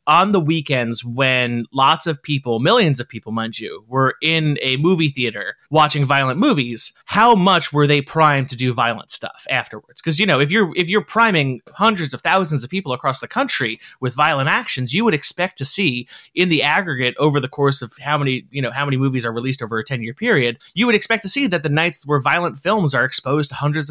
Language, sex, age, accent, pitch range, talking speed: English, male, 30-49, American, 130-175 Hz, 225 wpm